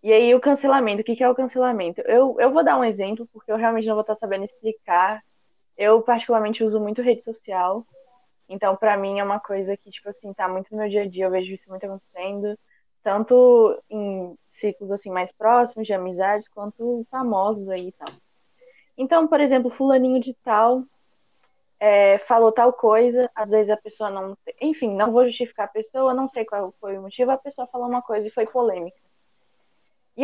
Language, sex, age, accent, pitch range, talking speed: Portuguese, female, 10-29, Brazilian, 190-240 Hz, 195 wpm